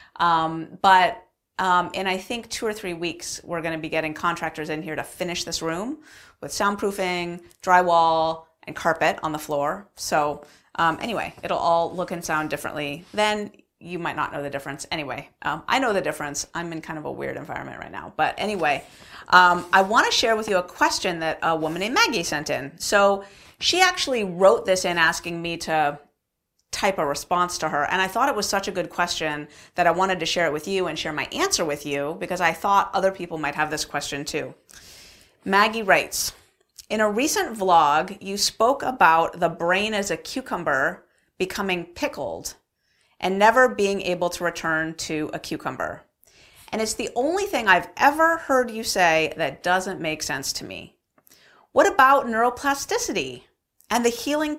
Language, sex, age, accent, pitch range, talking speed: English, female, 30-49, American, 160-210 Hz, 190 wpm